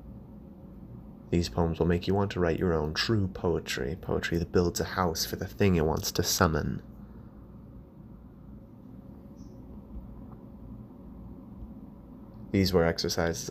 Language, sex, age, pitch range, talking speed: English, male, 20-39, 85-95 Hz, 120 wpm